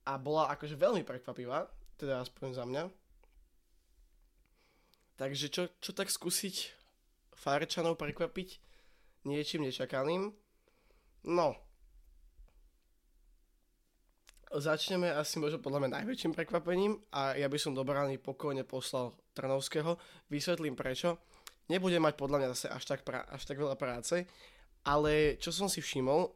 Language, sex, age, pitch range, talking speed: Slovak, male, 20-39, 135-175 Hz, 120 wpm